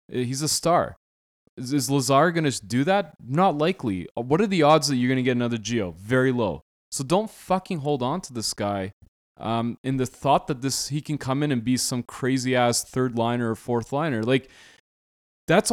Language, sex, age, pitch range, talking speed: English, male, 20-39, 120-145 Hz, 200 wpm